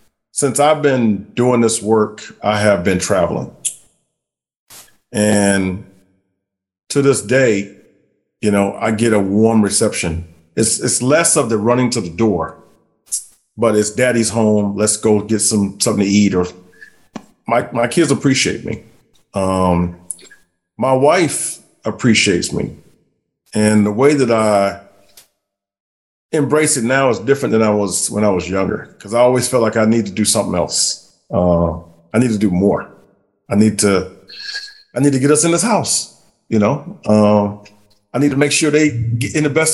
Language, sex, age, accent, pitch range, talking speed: English, male, 40-59, American, 100-125 Hz, 165 wpm